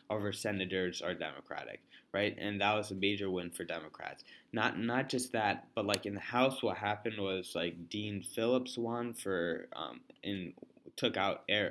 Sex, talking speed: male, 175 wpm